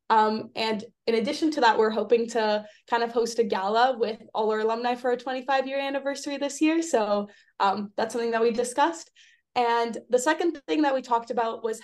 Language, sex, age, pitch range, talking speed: English, female, 20-39, 215-265 Hz, 210 wpm